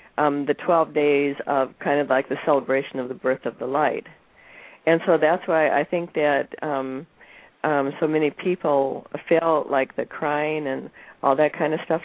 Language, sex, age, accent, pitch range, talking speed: English, female, 50-69, American, 135-165 Hz, 190 wpm